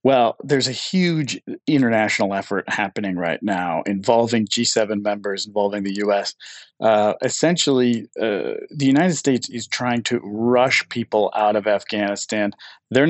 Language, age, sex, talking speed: English, 40-59, male, 135 wpm